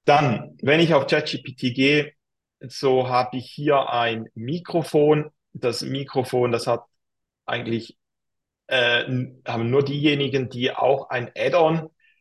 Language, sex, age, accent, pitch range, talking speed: English, male, 40-59, German, 120-150 Hz, 125 wpm